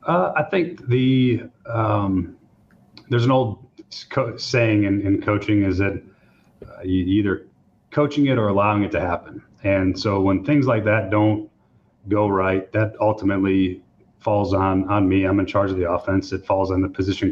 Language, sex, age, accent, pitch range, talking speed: English, male, 30-49, American, 95-115 Hz, 175 wpm